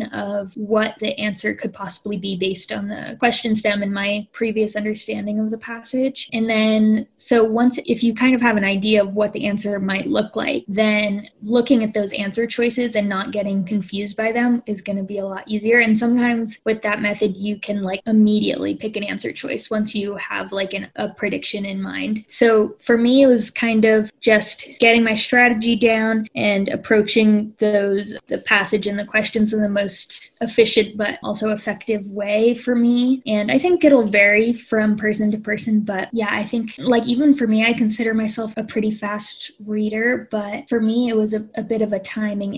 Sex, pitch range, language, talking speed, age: female, 210-230 Hz, English, 200 wpm, 10-29